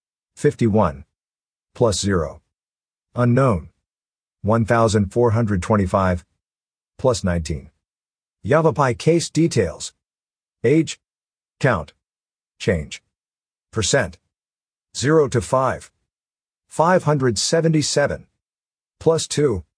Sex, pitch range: male, 90-125 Hz